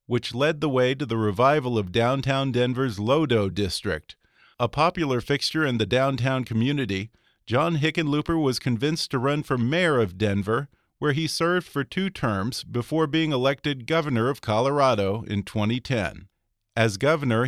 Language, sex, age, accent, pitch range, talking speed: English, male, 40-59, American, 110-135 Hz, 155 wpm